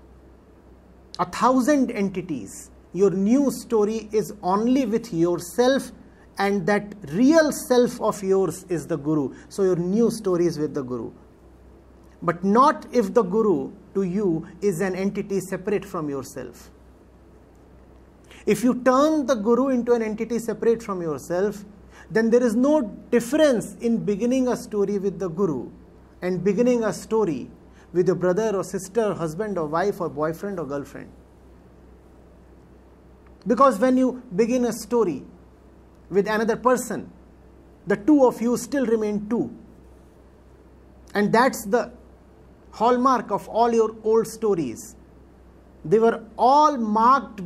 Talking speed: 140 wpm